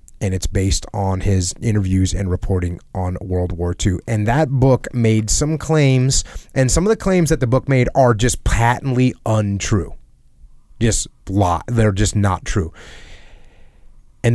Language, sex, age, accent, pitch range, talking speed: English, male, 30-49, American, 95-125 Hz, 160 wpm